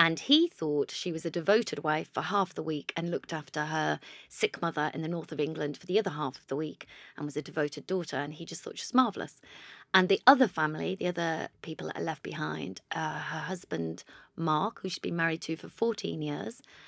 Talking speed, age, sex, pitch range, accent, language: 230 wpm, 30-49, female, 160-190 Hz, British, English